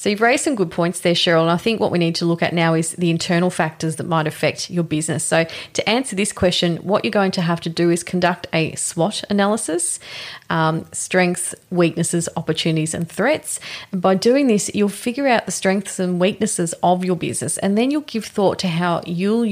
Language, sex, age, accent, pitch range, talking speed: English, female, 30-49, Australian, 165-205 Hz, 220 wpm